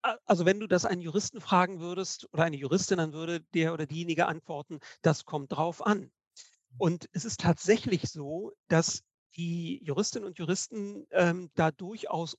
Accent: German